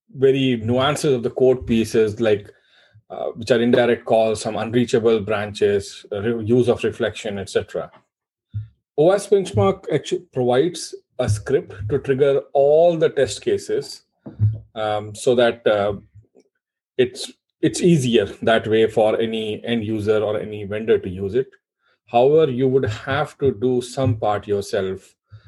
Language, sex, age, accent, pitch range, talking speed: English, male, 30-49, Indian, 110-140 Hz, 140 wpm